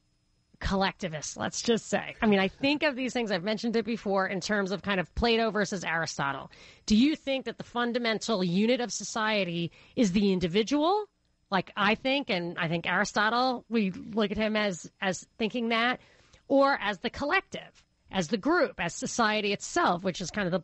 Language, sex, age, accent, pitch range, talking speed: English, female, 30-49, American, 195-250 Hz, 190 wpm